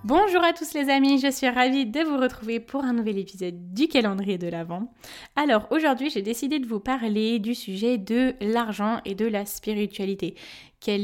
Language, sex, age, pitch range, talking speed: French, female, 20-39, 200-235 Hz, 190 wpm